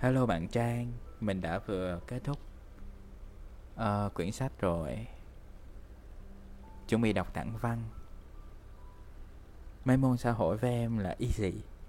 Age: 20-39